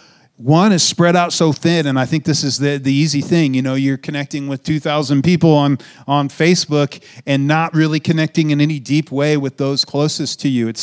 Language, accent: English, American